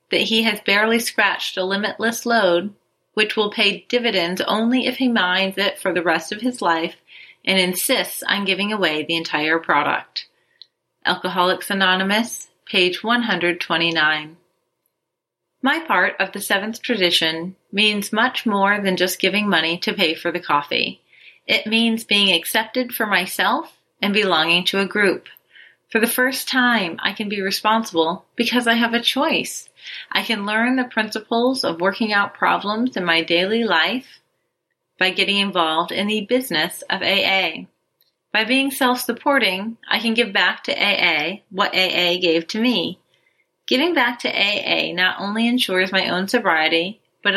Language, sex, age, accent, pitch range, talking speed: English, female, 30-49, American, 180-225 Hz, 155 wpm